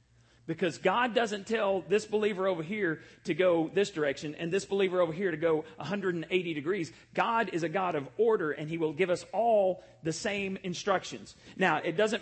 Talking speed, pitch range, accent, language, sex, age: 190 wpm, 175-235 Hz, American, English, male, 40-59